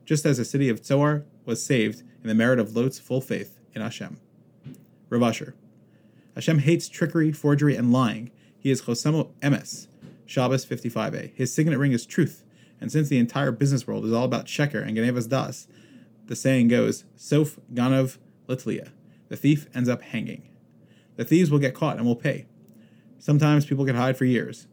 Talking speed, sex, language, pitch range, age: 175 wpm, male, English, 115-140 Hz, 30-49